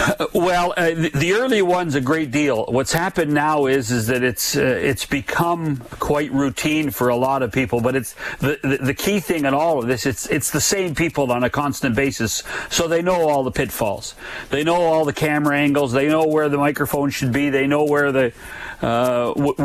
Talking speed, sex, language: 210 wpm, male, English